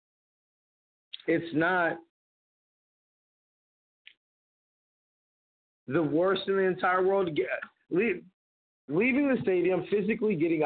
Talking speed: 90 wpm